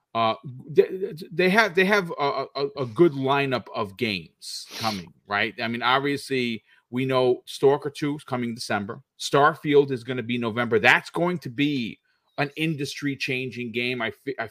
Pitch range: 115-140 Hz